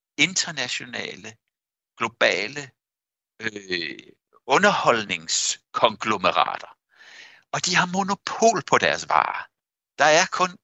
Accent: native